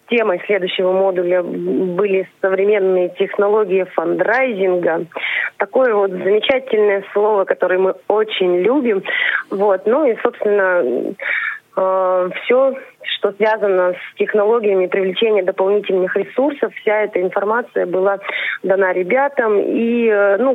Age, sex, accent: 20-39, female, native